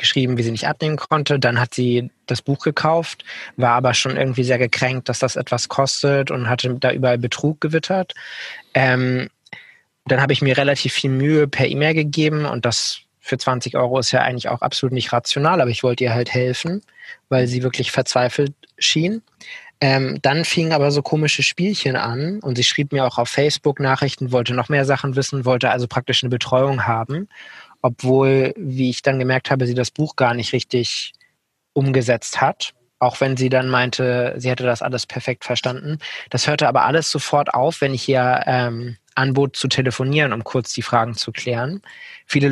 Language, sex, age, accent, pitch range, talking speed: German, male, 20-39, German, 125-140 Hz, 190 wpm